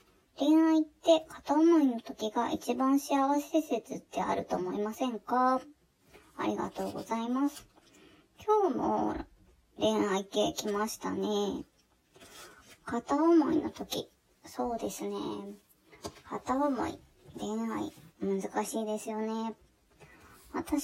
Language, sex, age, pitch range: Japanese, male, 20-39, 235-310 Hz